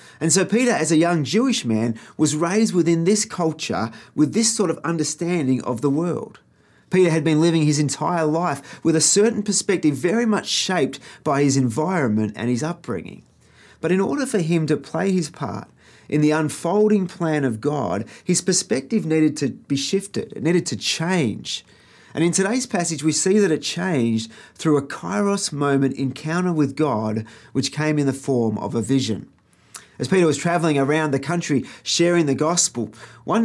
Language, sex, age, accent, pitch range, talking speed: English, male, 30-49, Australian, 140-185 Hz, 180 wpm